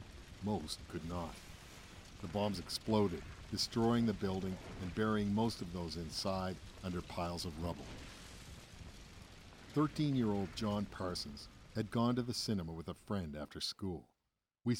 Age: 50-69